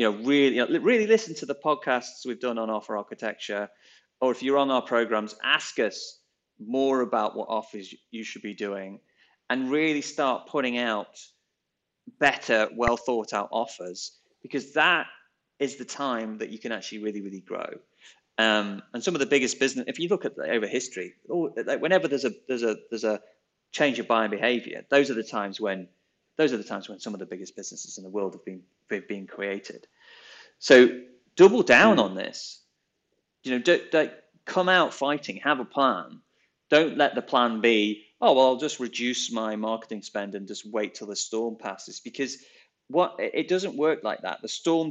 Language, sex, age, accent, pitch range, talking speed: English, male, 30-49, British, 105-140 Hz, 195 wpm